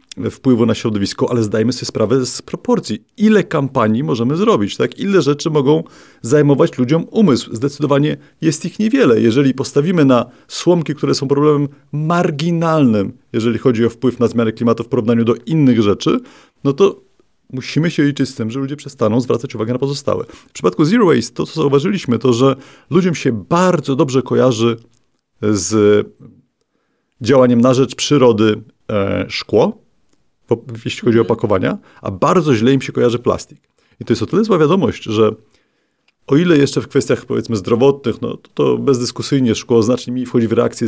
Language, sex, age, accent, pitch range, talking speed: Polish, male, 40-59, native, 115-150 Hz, 165 wpm